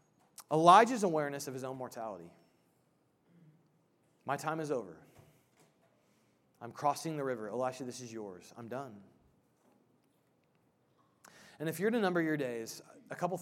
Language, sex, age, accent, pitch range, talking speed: English, male, 30-49, American, 125-160 Hz, 130 wpm